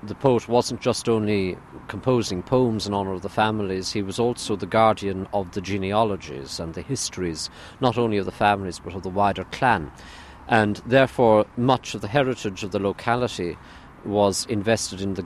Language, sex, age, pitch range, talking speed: English, male, 50-69, 95-120 Hz, 180 wpm